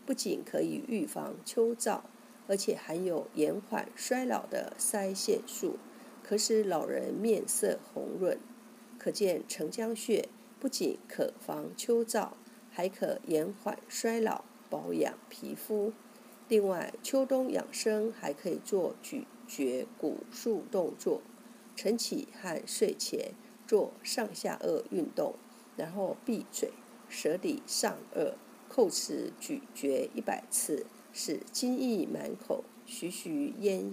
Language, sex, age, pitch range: Chinese, female, 50-69, 210-260 Hz